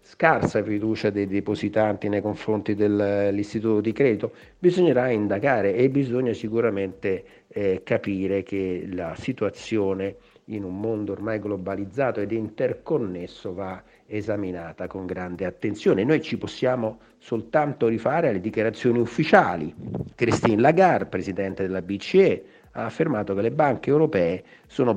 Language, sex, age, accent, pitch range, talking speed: Italian, male, 50-69, native, 95-120 Hz, 125 wpm